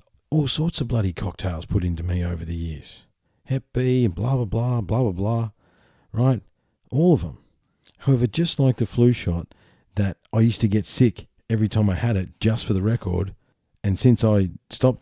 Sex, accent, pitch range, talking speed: male, Australian, 85-115 Hz, 190 wpm